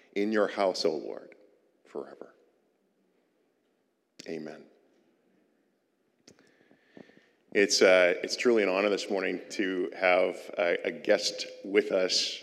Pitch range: 90-130 Hz